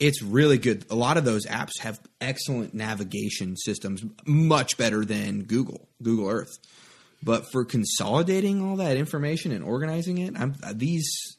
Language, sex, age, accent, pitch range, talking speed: English, male, 20-39, American, 105-125 Hz, 155 wpm